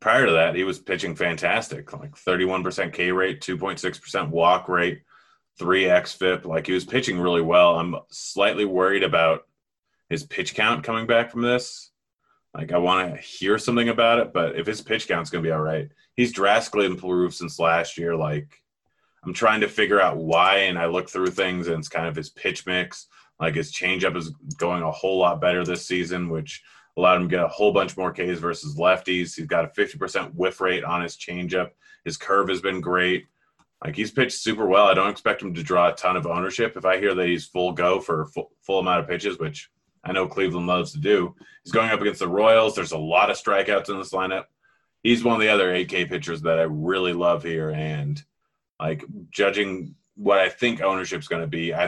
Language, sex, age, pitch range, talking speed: English, male, 20-39, 85-100 Hz, 215 wpm